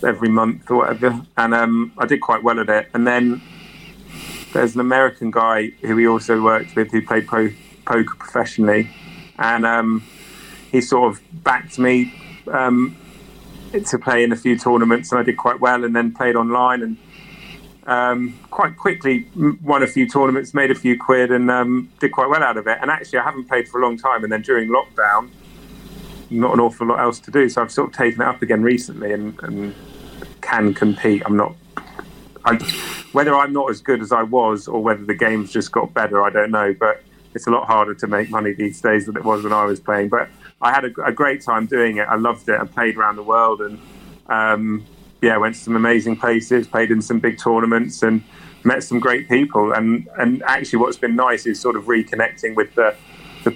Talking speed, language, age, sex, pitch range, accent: 210 wpm, English, 30-49, male, 110-125 Hz, British